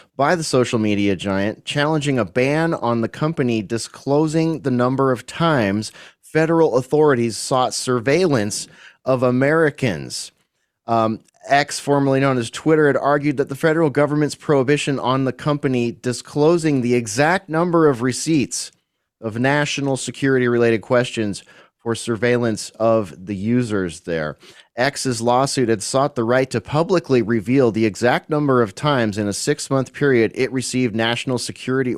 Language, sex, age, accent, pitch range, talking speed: English, male, 30-49, American, 115-150 Hz, 145 wpm